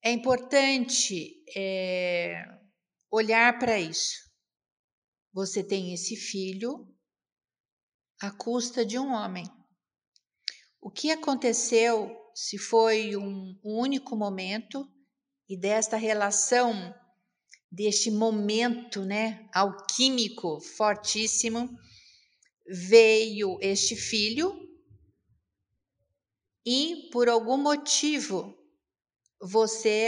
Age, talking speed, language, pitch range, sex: 50-69, 80 wpm, Portuguese, 195-250 Hz, female